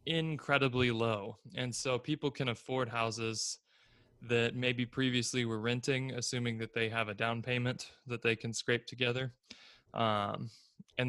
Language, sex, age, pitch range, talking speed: English, male, 20-39, 115-130 Hz, 145 wpm